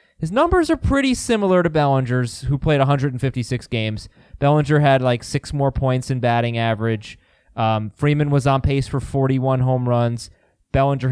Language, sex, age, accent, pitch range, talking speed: English, male, 20-39, American, 130-180 Hz, 160 wpm